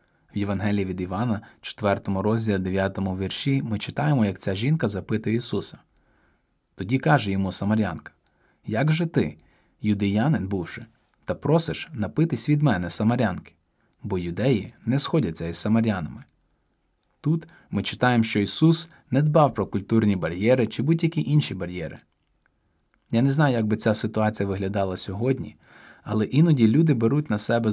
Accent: native